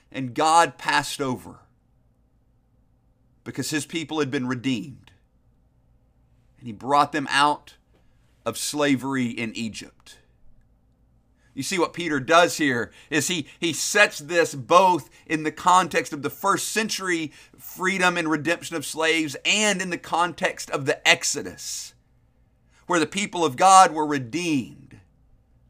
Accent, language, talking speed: American, English, 135 wpm